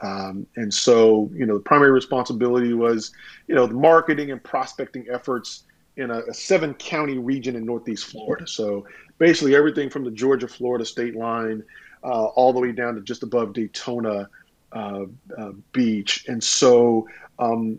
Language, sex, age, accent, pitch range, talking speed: English, male, 40-59, American, 115-140 Hz, 165 wpm